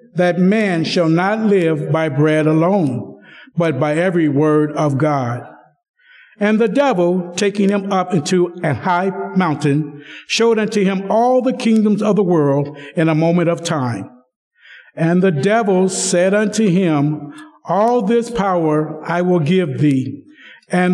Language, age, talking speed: English, 60-79, 150 wpm